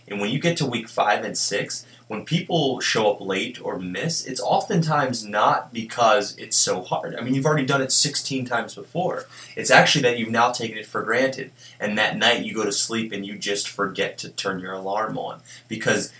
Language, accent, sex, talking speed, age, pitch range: English, American, male, 215 wpm, 20-39, 100-125 Hz